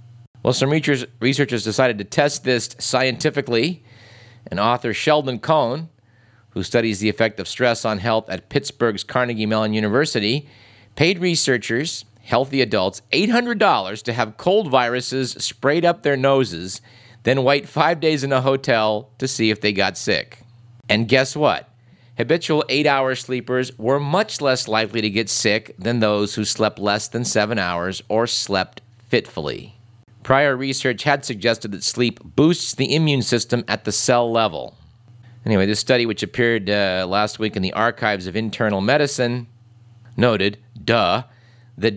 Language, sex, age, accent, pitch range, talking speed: English, male, 50-69, American, 110-135 Hz, 150 wpm